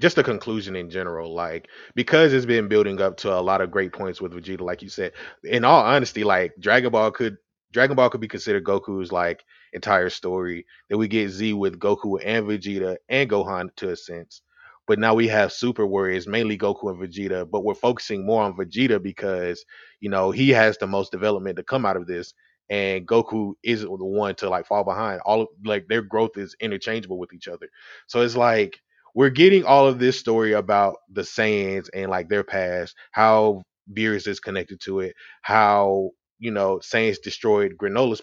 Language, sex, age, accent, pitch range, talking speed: English, male, 20-39, American, 95-120 Hz, 200 wpm